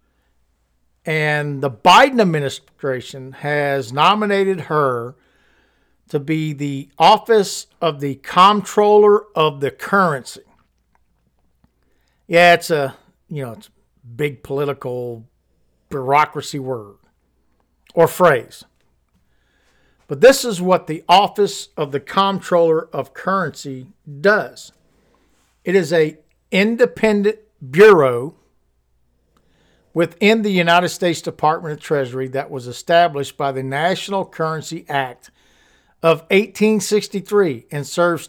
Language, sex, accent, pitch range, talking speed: English, male, American, 135-195 Hz, 100 wpm